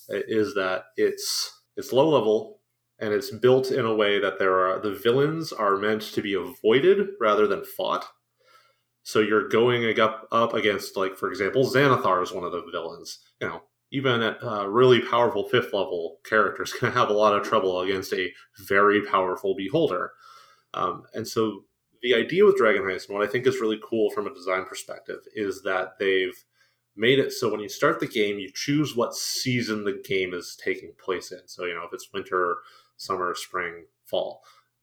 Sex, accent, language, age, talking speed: male, American, English, 30-49, 190 wpm